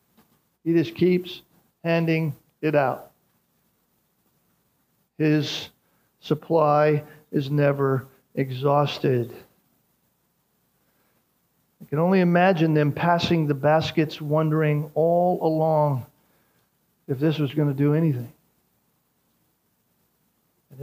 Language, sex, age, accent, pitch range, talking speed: English, male, 50-69, American, 140-160 Hz, 85 wpm